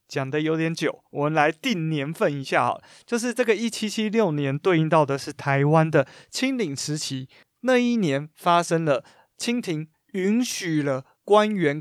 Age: 20-39